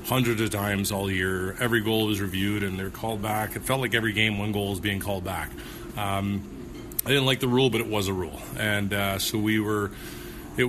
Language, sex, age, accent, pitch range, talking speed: English, male, 30-49, American, 100-115 Hz, 230 wpm